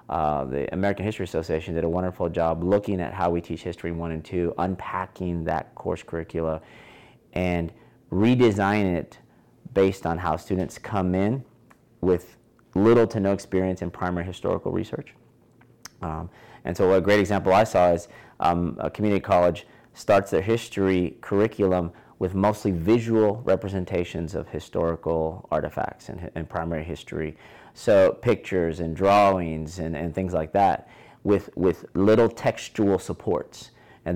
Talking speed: 145 wpm